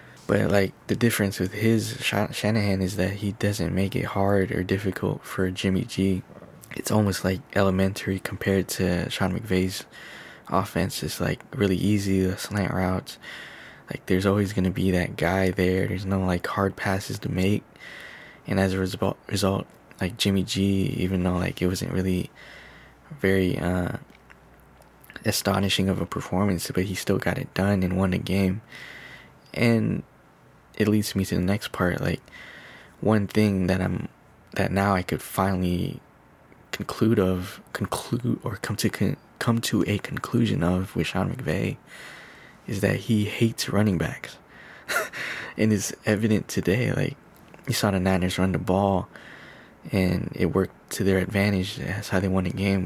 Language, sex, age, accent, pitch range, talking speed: English, male, 10-29, American, 95-105 Hz, 160 wpm